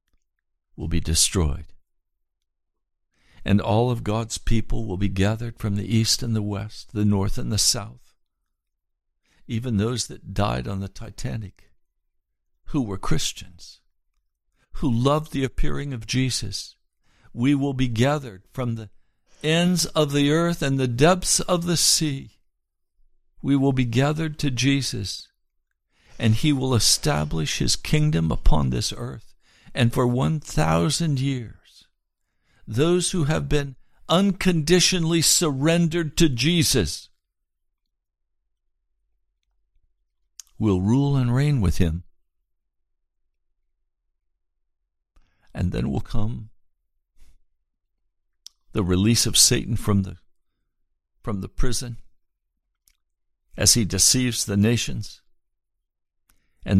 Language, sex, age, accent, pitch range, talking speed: English, male, 60-79, American, 85-130 Hz, 110 wpm